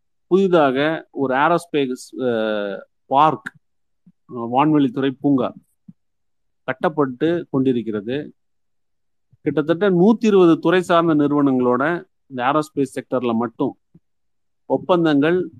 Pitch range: 130-165 Hz